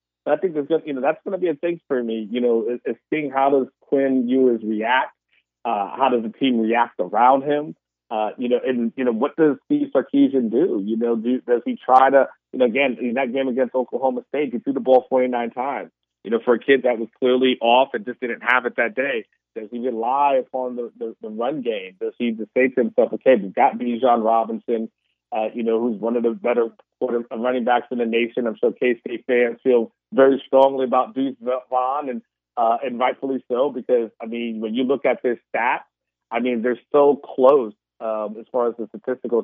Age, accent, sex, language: 30-49, American, male, English